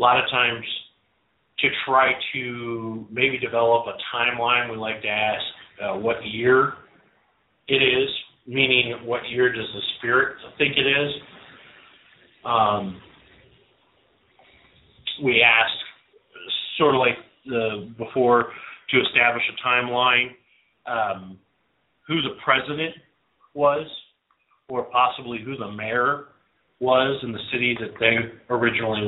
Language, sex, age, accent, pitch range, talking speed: English, male, 40-59, American, 105-125 Hz, 120 wpm